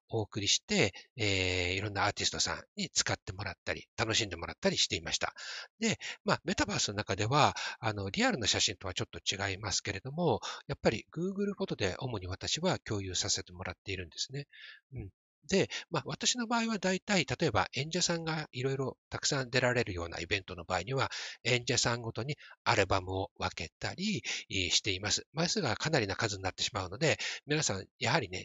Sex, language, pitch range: male, Japanese, 100-150 Hz